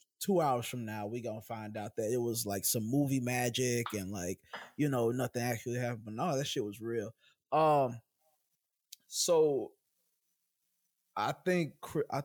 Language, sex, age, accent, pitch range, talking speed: English, male, 20-39, American, 115-150 Hz, 160 wpm